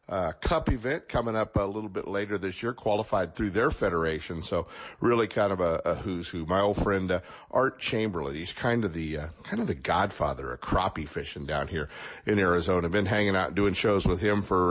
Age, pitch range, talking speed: 50-69, 90-110 Hz, 220 wpm